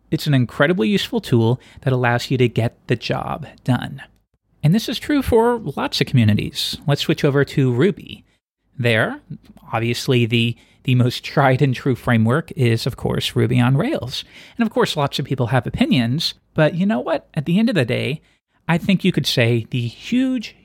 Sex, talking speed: male, 190 wpm